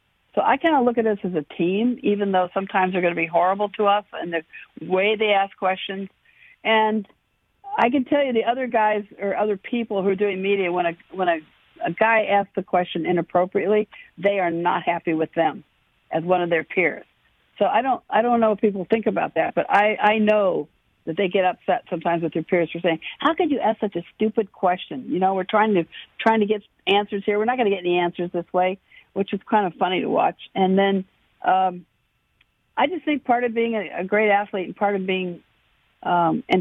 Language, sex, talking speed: English, female, 230 wpm